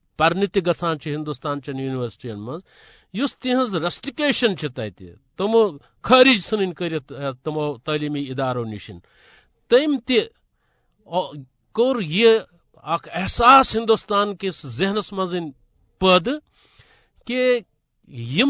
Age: 60-79